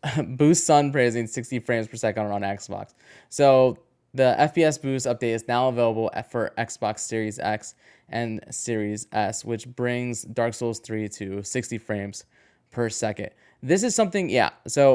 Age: 20-39